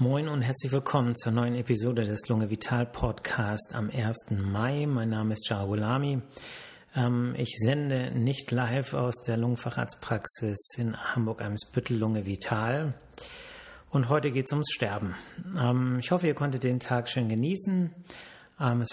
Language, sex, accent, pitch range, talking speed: German, male, German, 115-135 Hz, 135 wpm